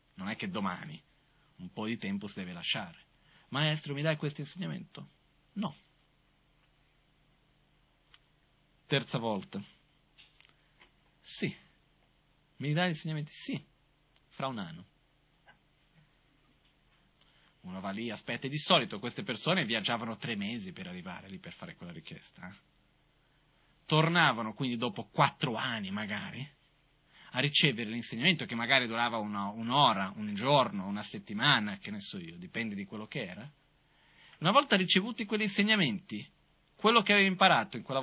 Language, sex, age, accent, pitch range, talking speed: Italian, male, 30-49, native, 135-170 Hz, 135 wpm